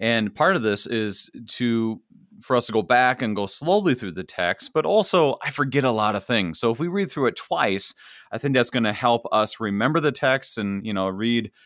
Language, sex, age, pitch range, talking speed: English, male, 40-59, 105-135 Hz, 230 wpm